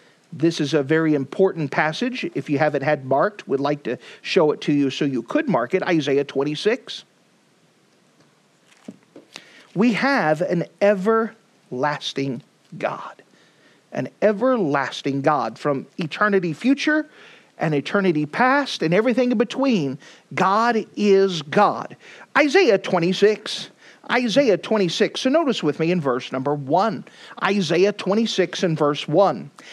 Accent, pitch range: American, 160-230 Hz